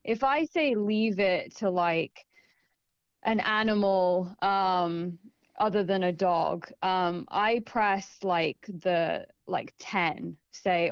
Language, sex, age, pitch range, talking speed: English, female, 20-39, 185-225 Hz, 120 wpm